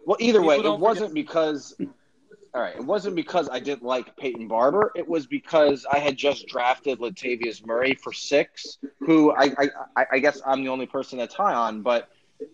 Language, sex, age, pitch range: English, male, 20-39, 115-145 Hz